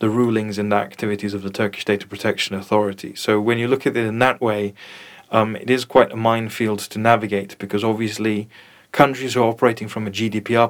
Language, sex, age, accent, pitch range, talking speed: English, male, 20-39, British, 100-115 Hz, 200 wpm